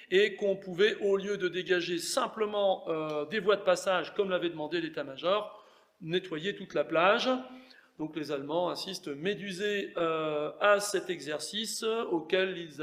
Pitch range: 175-205 Hz